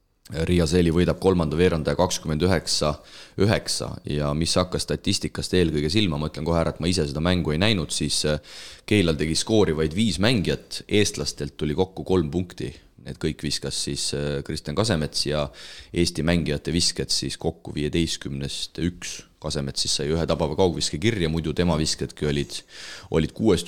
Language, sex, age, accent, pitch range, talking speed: English, male, 30-49, Finnish, 75-85 Hz, 150 wpm